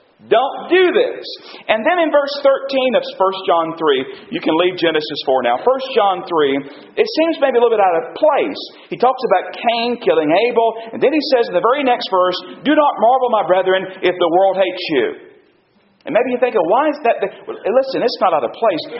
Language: English